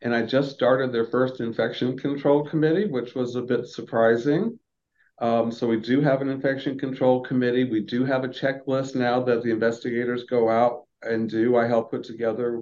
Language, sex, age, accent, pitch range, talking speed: English, male, 50-69, American, 120-145 Hz, 190 wpm